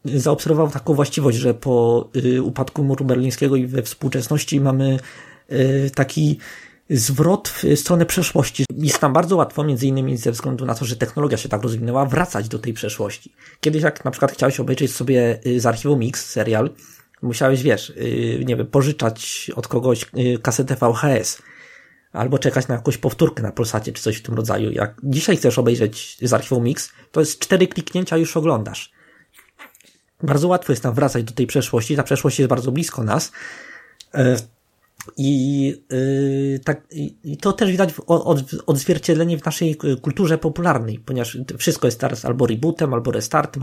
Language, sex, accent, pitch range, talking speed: Polish, male, native, 125-150 Hz, 160 wpm